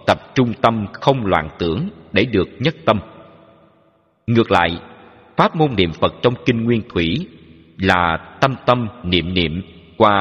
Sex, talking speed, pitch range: male, 155 wpm, 80-120 Hz